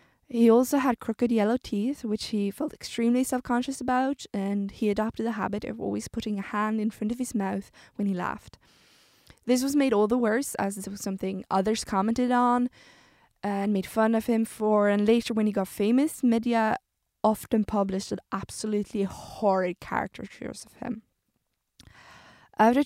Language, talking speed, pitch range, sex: English, 170 wpm, 200-250 Hz, female